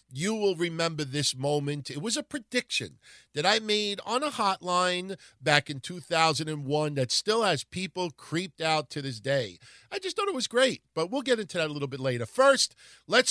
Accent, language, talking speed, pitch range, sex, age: American, English, 200 wpm, 135-210 Hz, male, 50-69